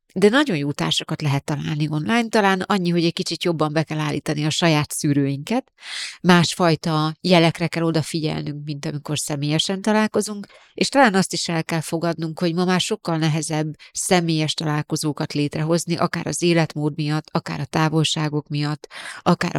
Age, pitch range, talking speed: 30-49, 145-170 Hz, 155 wpm